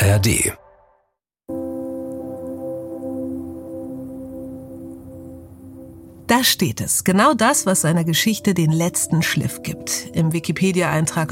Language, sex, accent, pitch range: German, female, German, 145-185 Hz